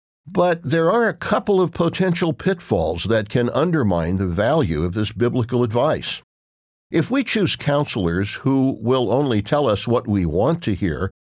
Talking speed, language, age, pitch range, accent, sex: 165 wpm, English, 60-79, 95-140 Hz, American, male